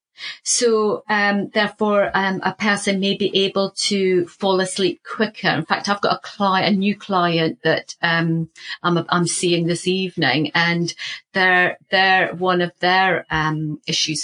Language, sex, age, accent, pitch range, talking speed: English, female, 40-59, British, 170-195 Hz, 155 wpm